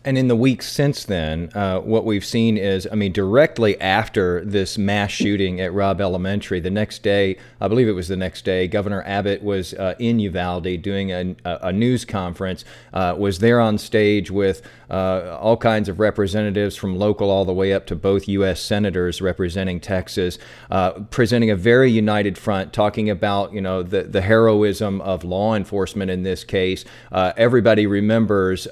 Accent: American